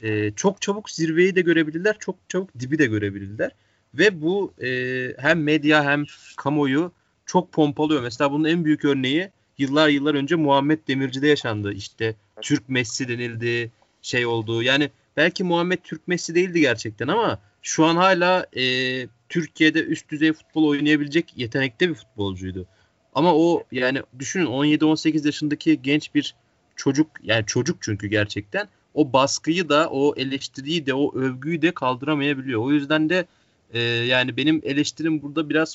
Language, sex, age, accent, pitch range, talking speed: Turkish, male, 30-49, native, 110-155 Hz, 150 wpm